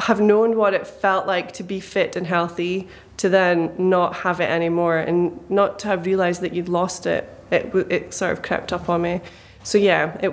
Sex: female